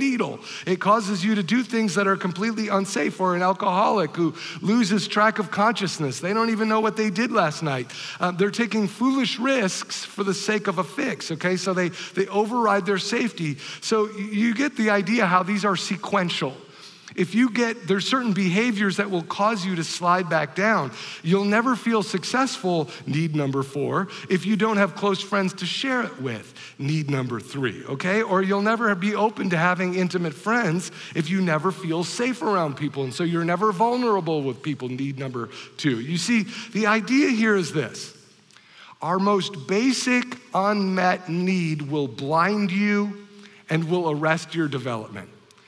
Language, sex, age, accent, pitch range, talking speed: English, male, 50-69, American, 160-215 Hz, 180 wpm